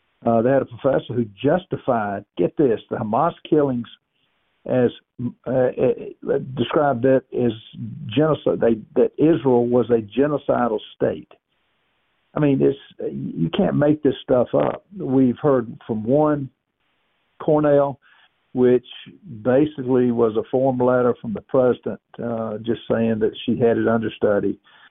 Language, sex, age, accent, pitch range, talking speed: English, male, 60-79, American, 115-135 Hz, 140 wpm